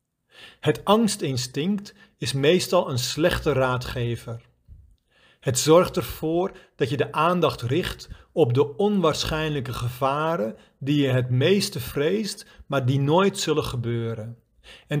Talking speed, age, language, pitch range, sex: 120 wpm, 50-69, Dutch, 125-175 Hz, male